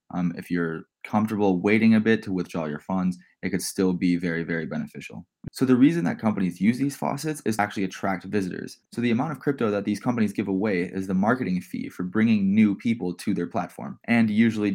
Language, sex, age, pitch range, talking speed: English, male, 20-39, 95-110 Hz, 220 wpm